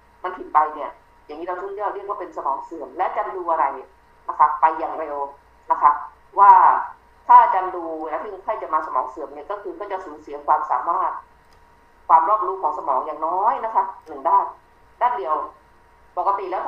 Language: Thai